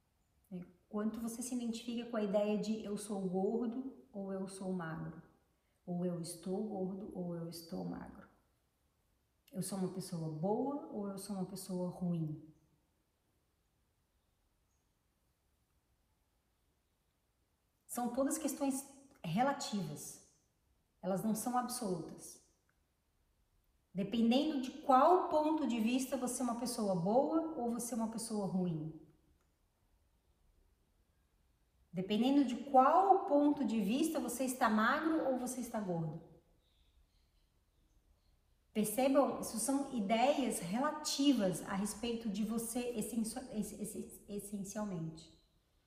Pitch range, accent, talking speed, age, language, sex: 155-250 Hz, Brazilian, 105 wpm, 40-59, Portuguese, female